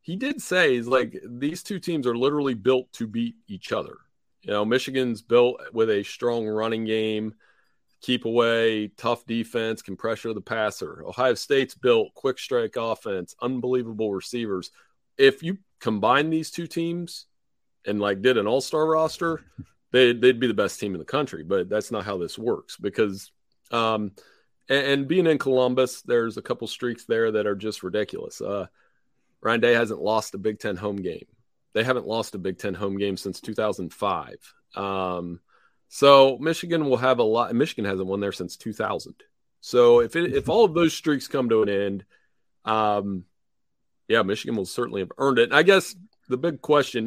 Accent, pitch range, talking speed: American, 105-140 Hz, 180 wpm